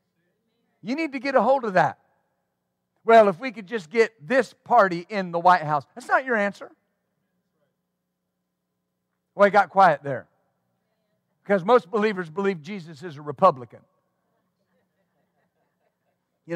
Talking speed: 140 wpm